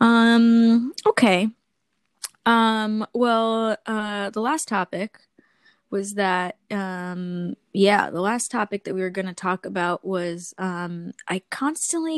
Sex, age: female, 10-29